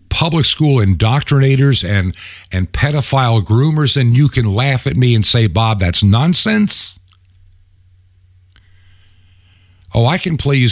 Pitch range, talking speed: 90-125 Hz, 130 wpm